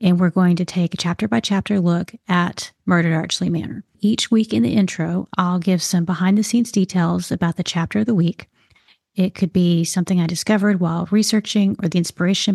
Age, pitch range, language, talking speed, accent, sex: 30-49, 175-210 Hz, English, 185 wpm, American, female